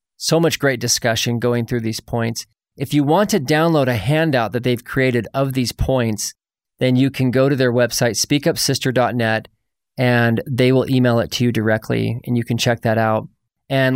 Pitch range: 115-135 Hz